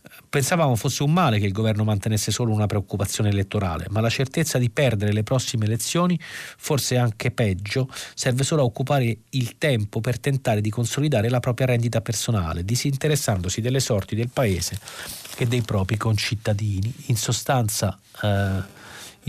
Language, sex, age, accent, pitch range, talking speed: Italian, male, 40-59, native, 105-130 Hz, 150 wpm